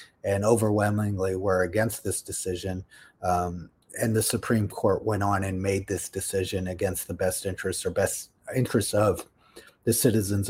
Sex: male